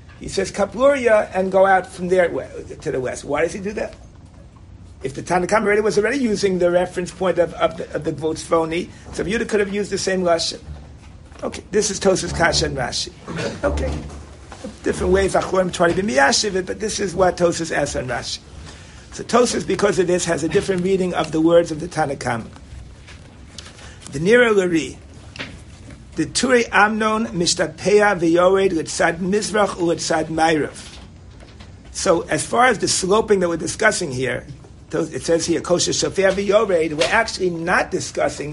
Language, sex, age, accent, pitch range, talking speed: English, male, 50-69, American, 135-195 Hz, 160 wpm